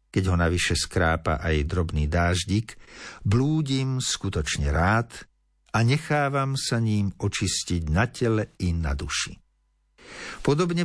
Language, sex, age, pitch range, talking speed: Slovak, male, 50-69, 90-115 Hz, 115 wpm